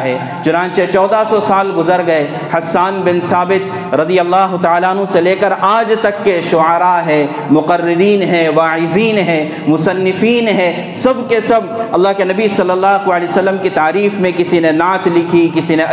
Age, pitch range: 50-69, 165-200 Hz